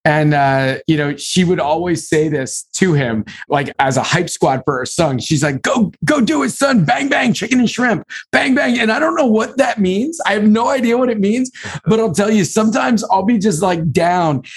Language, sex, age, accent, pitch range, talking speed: English, male, 40-59, American, 155-200 Hz, 235 wpm